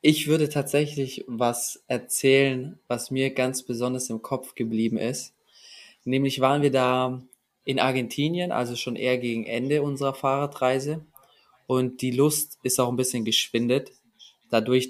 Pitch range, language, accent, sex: 120-135 Hz, German, German, male